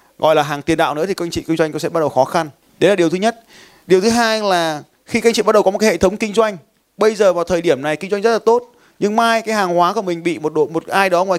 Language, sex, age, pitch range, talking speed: Vietnamese, male, 20-39, 165-215 Hz, 340 wpm